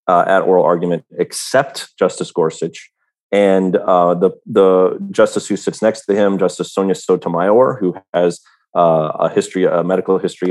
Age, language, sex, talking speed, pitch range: 30-49, English, male, 160 wpm, 95-115 Hz